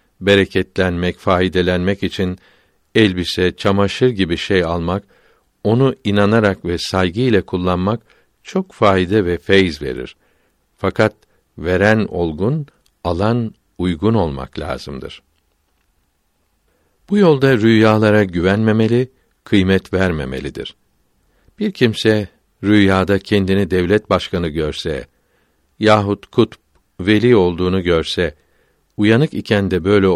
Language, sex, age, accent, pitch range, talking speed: Turkish, male, 60-79, native, 85-105 Hz, 95 wpm